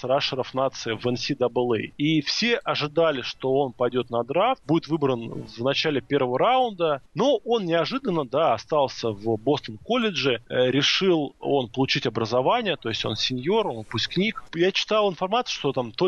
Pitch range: 125-180 Hz